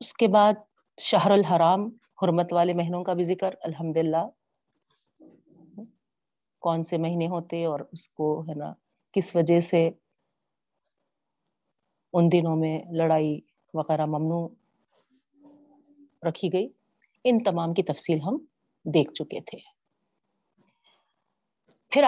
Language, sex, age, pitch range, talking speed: Urdu, female, 40-59, 165-225 Hz, 110 wpm